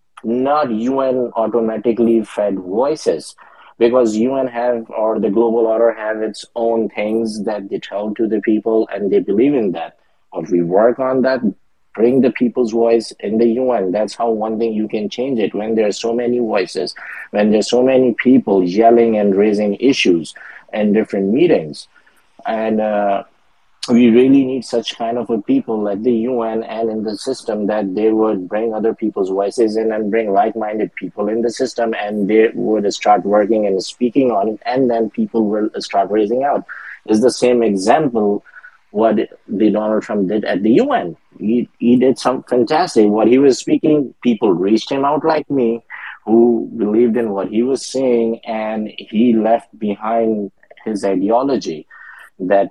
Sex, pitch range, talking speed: male, 105-120 Hz, 175 wpm